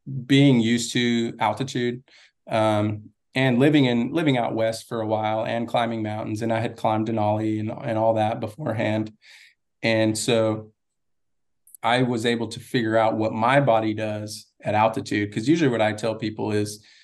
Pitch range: 110-130 Hz